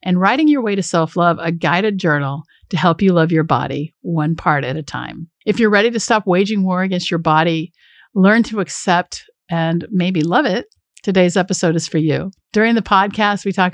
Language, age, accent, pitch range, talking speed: English, 50-69, American, 165-200 Hz, 210 wpm